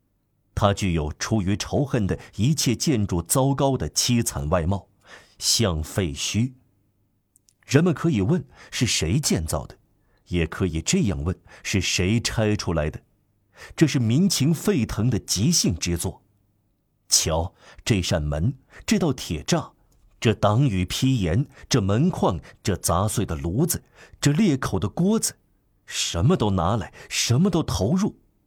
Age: 50-69